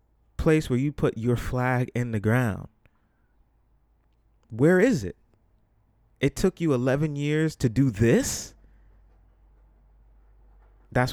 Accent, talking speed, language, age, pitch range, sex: American, 115 wpm, English, 30-49, 100-125 Hz, male